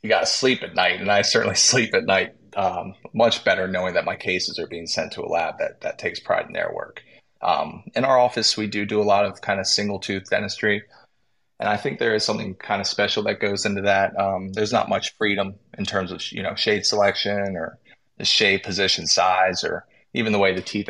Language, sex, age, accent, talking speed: English, male, 20-39, American, 235 wpm